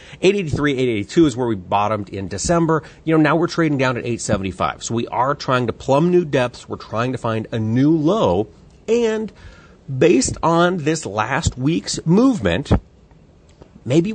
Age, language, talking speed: 40-59, English, 165 wpm